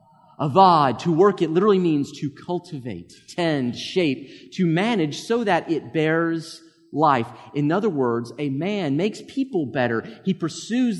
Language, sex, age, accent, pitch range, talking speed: English, male, 30-49, American, 130-175 Hz, 145 wpm